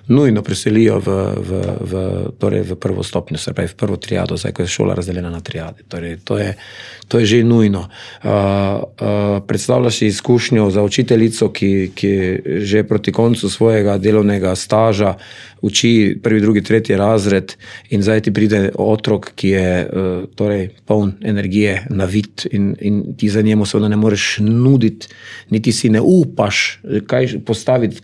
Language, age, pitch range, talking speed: English, 40-59, 100-110 Hz, 155 wpm